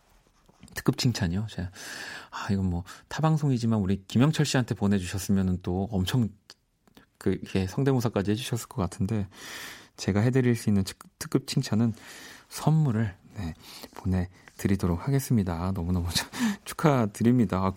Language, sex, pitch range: Korean, male, 95-135 Hz